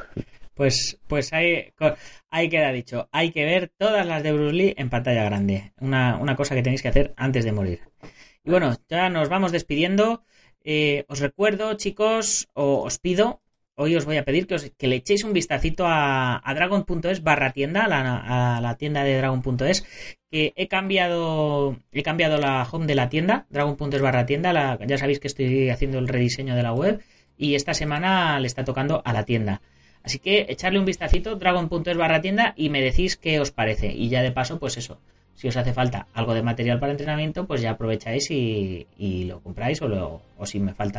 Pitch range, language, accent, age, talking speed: 120-160 Hz, Spanish, Spanish, 30-49, 200 wpm